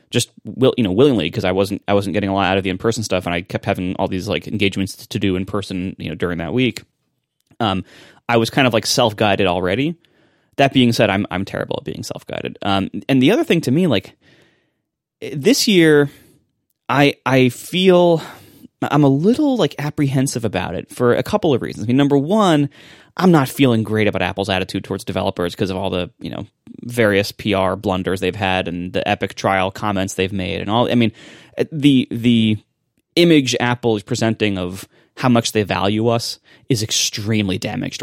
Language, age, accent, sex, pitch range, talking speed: English, 20-39, American, male, 95-130 Hz, 200 wpm